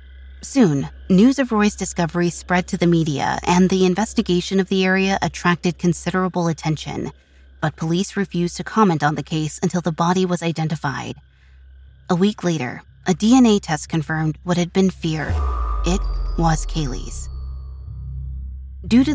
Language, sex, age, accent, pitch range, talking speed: English, female, 20-39, American, 125-185 Hz, 145 wpm